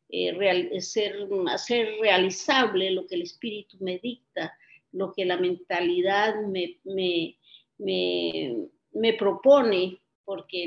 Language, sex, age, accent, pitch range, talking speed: English, female, 50-69, American, 190-245 Hz, 90 wpm